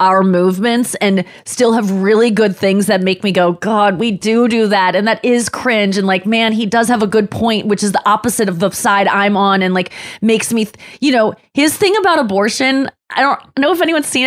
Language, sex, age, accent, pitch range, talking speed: English, female, 20-39, American, 205-295 Hz, 230 wpm